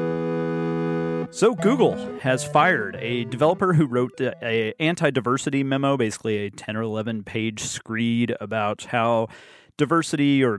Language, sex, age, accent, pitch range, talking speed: English, male, 30-49, American, 115-140 Hz, 125 wpm